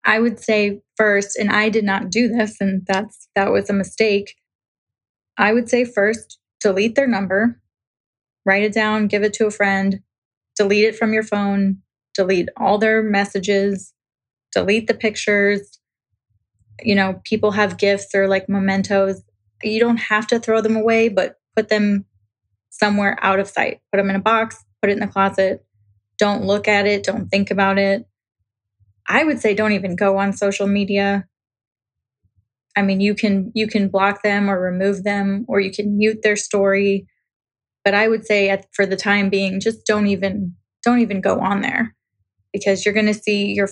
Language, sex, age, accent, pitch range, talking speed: English, female, 20-39, American, 190-210 Hz, 180 wpm